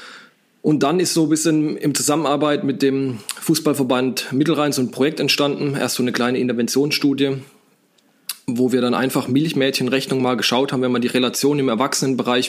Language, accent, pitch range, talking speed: German, German, 120-135 Hz, 170 wpm